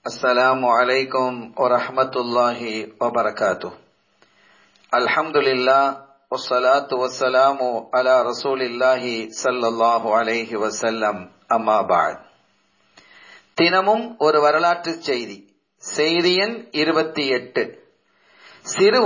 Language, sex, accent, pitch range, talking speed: Tamil, male, native, 130-185 Hz, 40 wpm